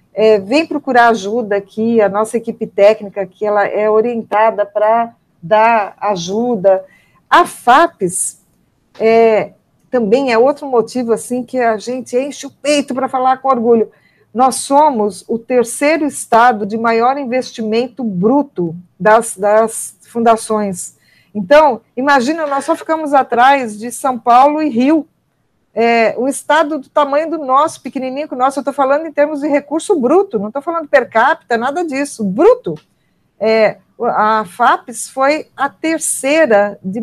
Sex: female